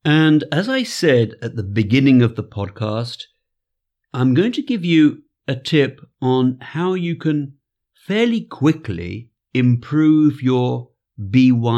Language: English